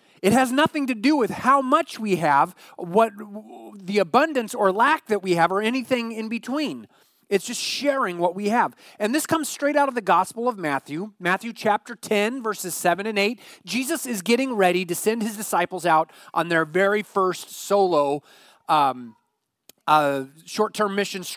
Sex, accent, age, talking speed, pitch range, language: male, American, 30-49, 175 wpm, 180-250 Hz, English